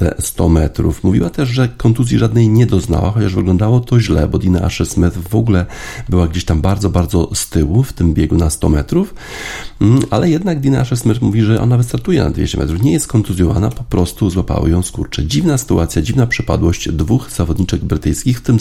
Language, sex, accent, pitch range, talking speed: Polish, male, native, 80-110 Hz, 195 wpm